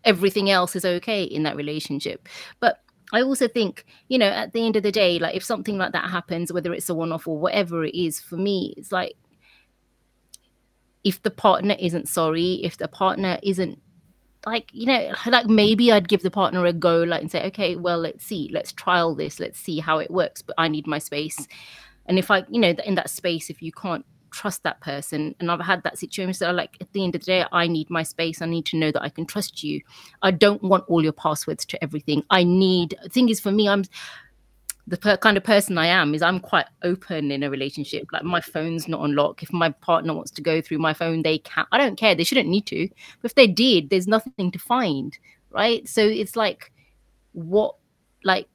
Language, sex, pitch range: English, female, 160-200 Hz